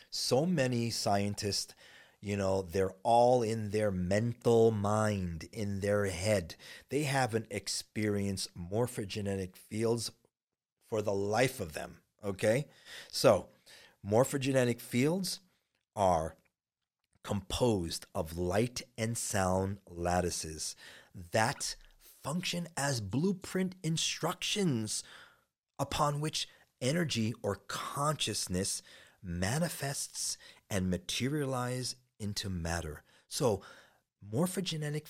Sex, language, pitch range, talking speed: male, English, 95-145 Hz, 90 wpm